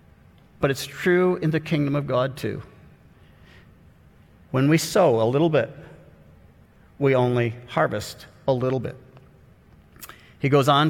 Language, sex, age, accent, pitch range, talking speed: English, male, 50-69, American, 130-170 Hz, 130 wpm